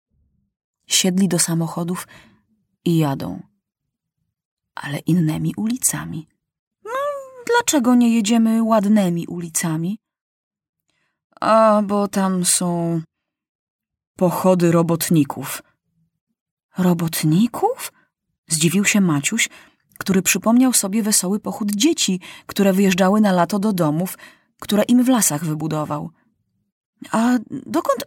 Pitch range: 165-220 Hz